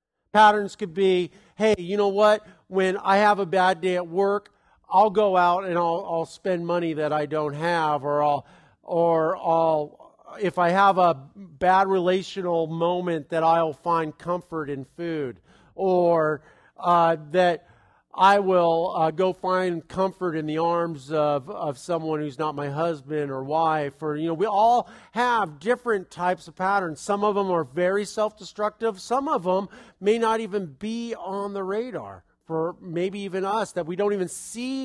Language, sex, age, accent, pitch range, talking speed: English, male, 50-69, American, 160-200 Hz, 170 wpm